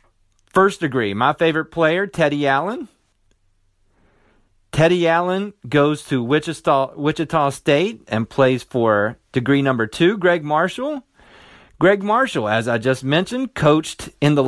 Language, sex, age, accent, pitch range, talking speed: English, male, 40-59, American, 105-160 Hz, 130 wpm